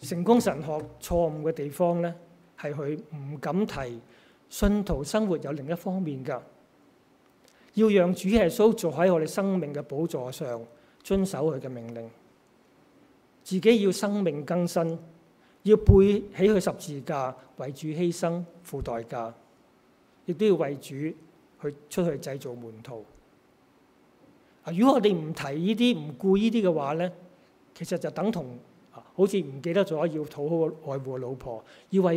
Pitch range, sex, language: 140-190 Hz, male, Chinese